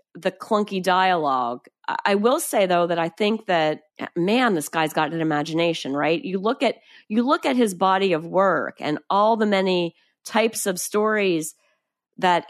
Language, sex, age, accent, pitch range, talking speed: English, female, 40-59, American, 175-215 Hz, 175 wpm